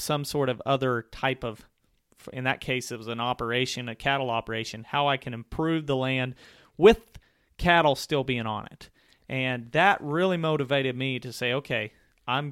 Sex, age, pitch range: male, 30-49, 120-145 Hz